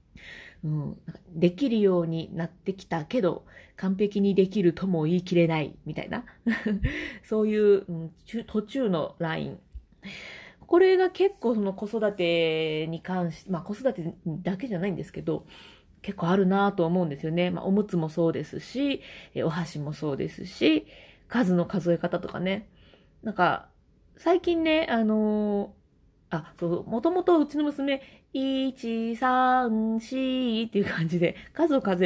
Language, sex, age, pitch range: Japanese, female, 30-49, 170-235 Hz